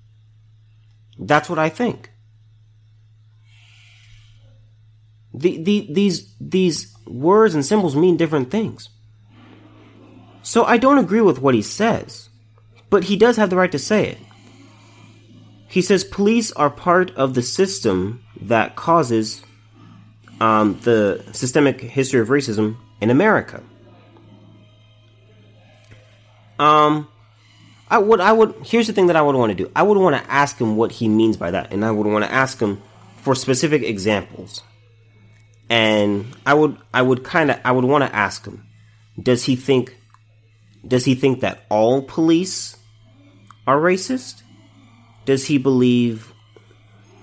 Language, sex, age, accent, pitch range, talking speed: English, male, 30-49, American, 110-135 Hz, 140 wpm